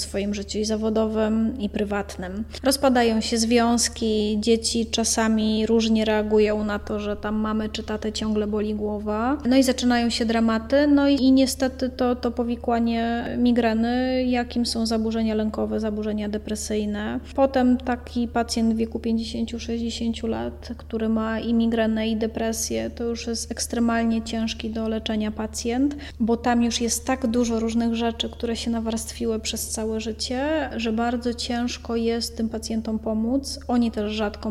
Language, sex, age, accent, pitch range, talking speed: Polish, female, 20-39, native, 220-240 Hz, 150 wpm